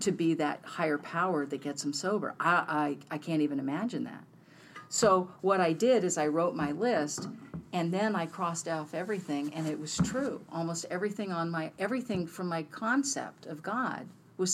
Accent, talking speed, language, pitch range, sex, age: American, 190 wpm, English, 160-200 Hz, female, 50-69